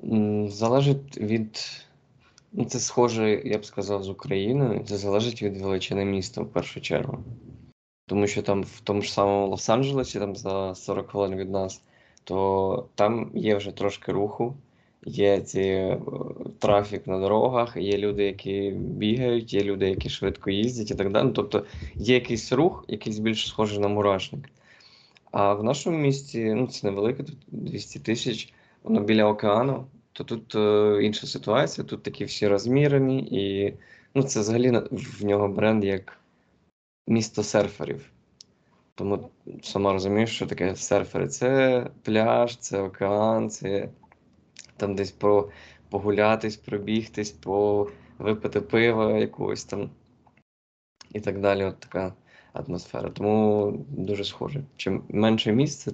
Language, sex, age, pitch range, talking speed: Ukrainian, male, 20-39, 100-115 Hz, 135 wpm